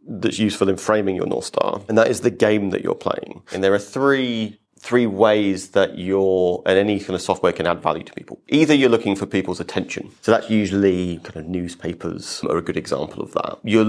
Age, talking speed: 30-49, 225 wpm